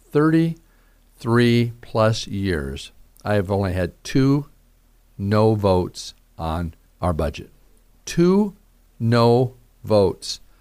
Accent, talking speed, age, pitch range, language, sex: American, 90 wpm, 50-69, 105-135 Hz, English, male